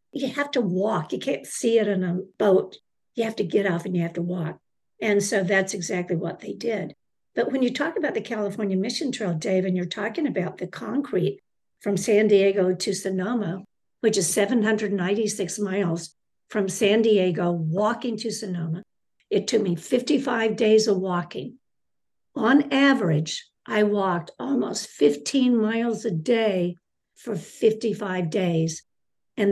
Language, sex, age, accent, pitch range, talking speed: English, female, 60-79, American, 185-230 Hz, 160 wpm